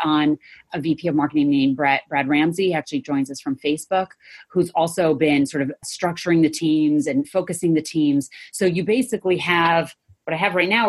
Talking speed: 185 wpm